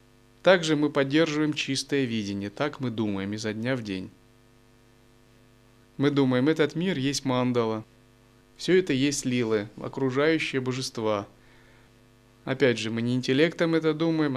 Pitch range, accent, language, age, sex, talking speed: 115-150 Hz, native, Russian, 30-49, male, 130 wpm